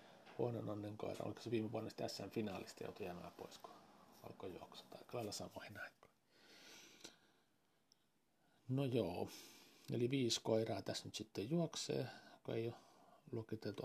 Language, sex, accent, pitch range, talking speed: Finnish, male, native, 110-135 Hz, 115 wpm